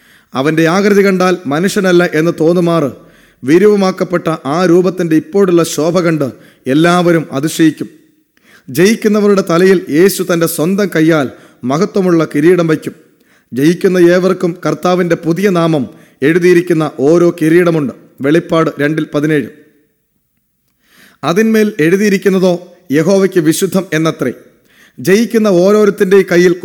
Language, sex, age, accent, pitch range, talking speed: English, male, 30-49, Indian, 160-190 Hz, 65 wpm